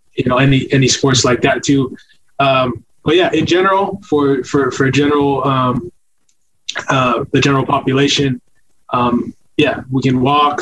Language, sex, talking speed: English, male, 155 wpm